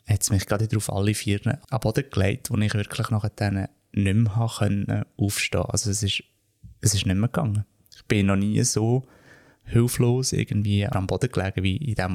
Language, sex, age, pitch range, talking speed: German, male, 20-39, 100-115 Hz, 195 wpm